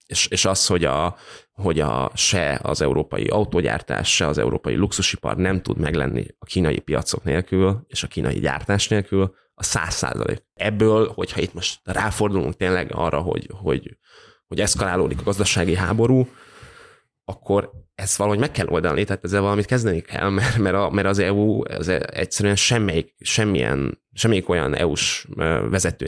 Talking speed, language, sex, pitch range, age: 155 wpm, Hungarian, male, 85-100 Hz, 20-39